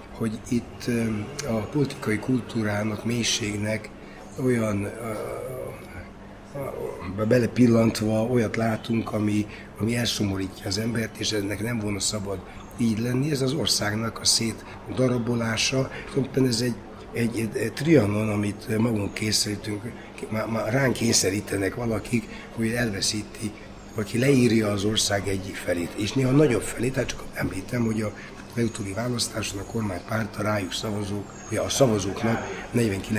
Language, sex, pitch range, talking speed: Hungarian, male, 100-115 Hz, 120 wpm